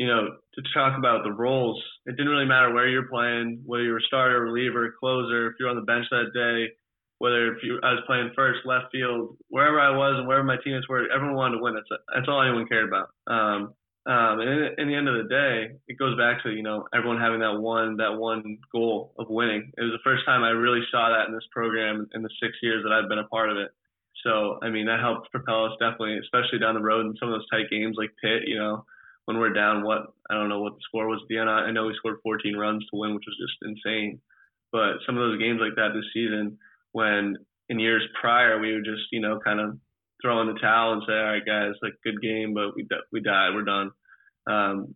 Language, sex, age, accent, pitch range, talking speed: English, male, 20-39, American, 110-120 Hz, 255 wpm